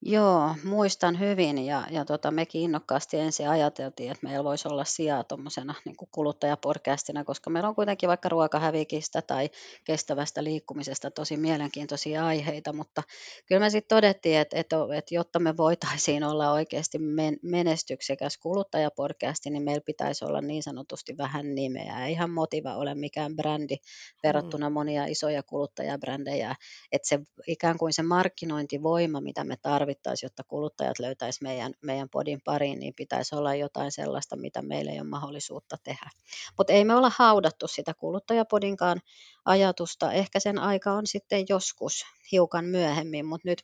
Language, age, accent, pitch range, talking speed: Finnish, 30-49, native, 145-170 Hz, 145 wpm